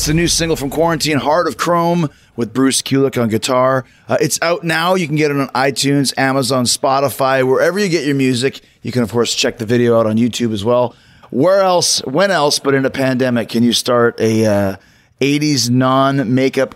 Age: 30-49